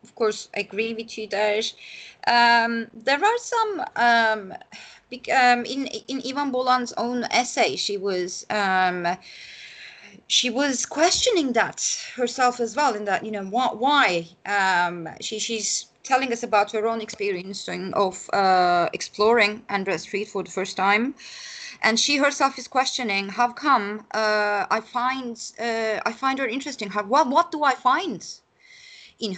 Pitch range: 195-255 Hz